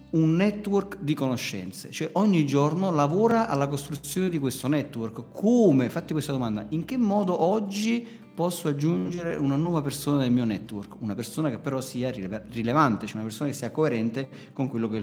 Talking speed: 180 wpm